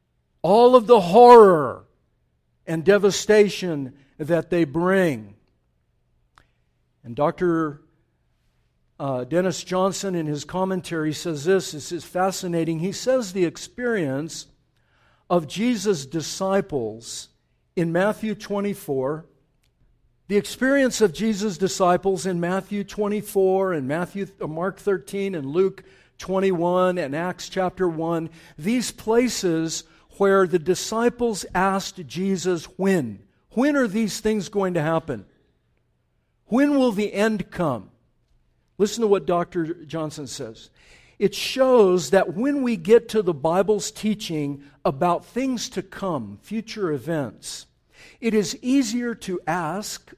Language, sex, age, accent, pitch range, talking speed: English, male, 60-79, American, 150-205 Hz, 120 wpm